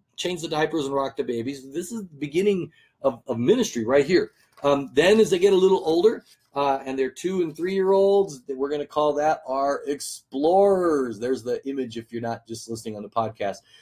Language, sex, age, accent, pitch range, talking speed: English, male, 30-49, American, 125-170 Hz, 210 wpm